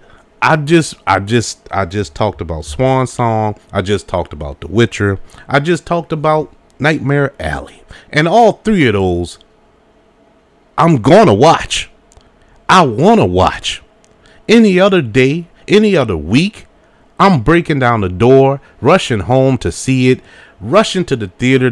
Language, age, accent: English, 30-49, American